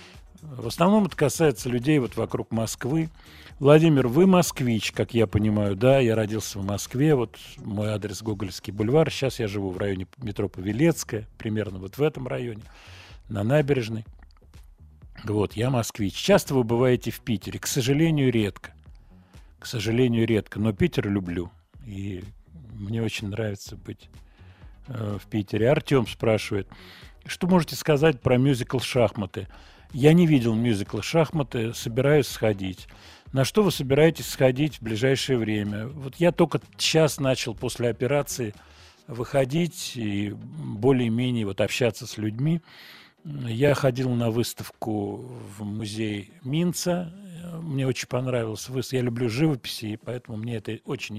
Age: 40-59